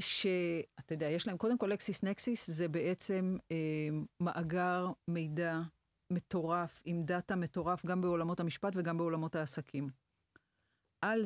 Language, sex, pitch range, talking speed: Hebrew, female, 165-215 Hz, 130 wpm